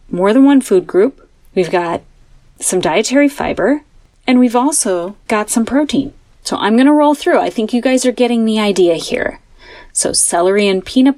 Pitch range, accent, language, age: 190-260 Hz, American, English, 30-49